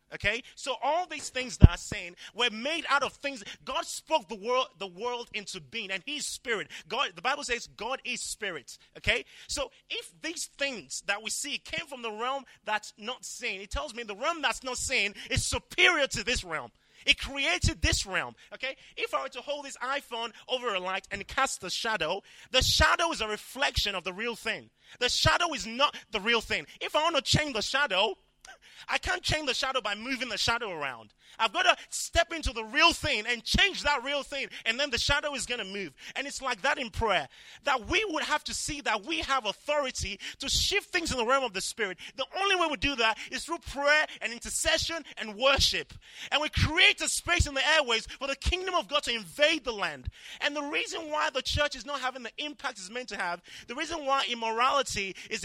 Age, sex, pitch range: 30-49, male, 225-295 Hz